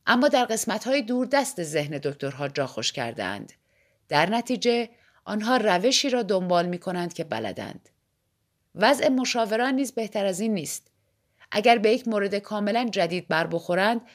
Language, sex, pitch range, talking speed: Persian, female, 170-240 Hz, 135 wpm